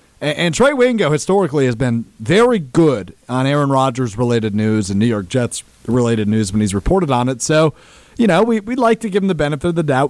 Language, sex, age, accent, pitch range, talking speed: English, male, 40-59, American, 125-180 Hz, 210 wpm